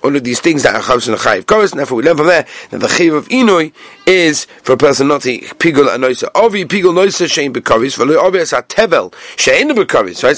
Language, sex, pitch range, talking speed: English, male, 140-185 Hz, 180 wpm